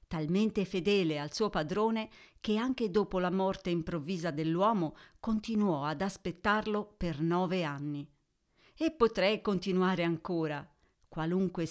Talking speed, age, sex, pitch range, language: 120 wpm, 40-59, female, 170-215 Hz, Italian